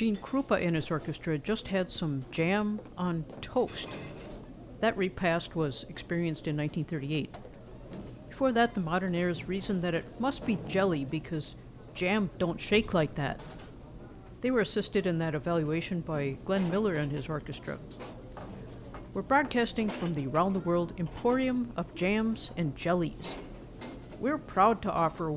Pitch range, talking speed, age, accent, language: 160-205 Hz, 145 wpm, 50-69, American, English